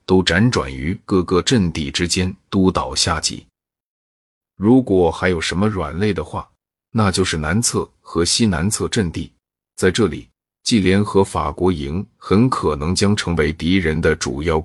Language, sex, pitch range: Chinese, male, 85-105 Hz